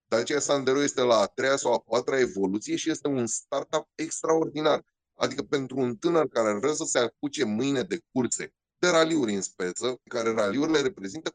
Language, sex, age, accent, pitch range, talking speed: Romanian, male, 30-49, native, 120-165 Hz, 185 wpm